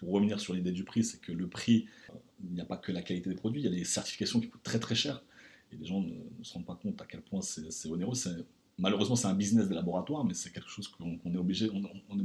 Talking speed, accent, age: 300 wpm, French, 40-59